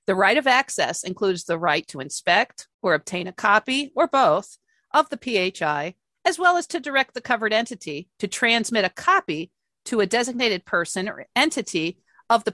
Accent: American